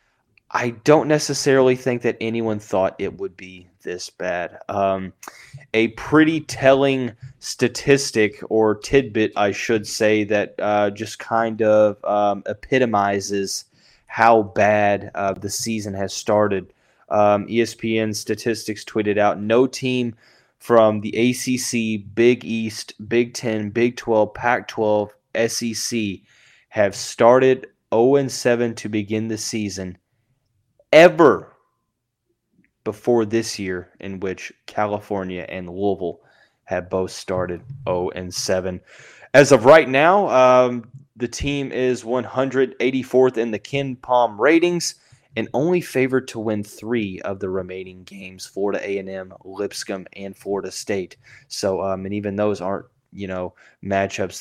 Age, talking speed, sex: 20-39, 125 wpm, male